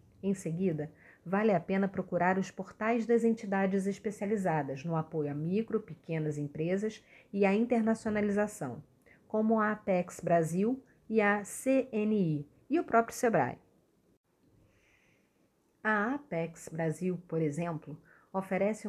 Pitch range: 165-225 Hz